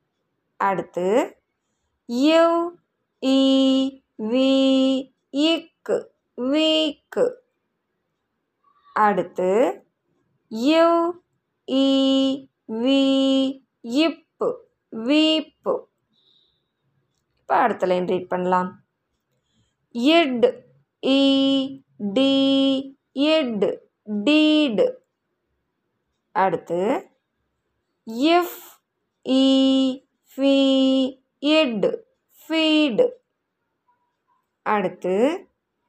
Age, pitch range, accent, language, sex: 20-39, 250-320 Hz, native, Tamil, female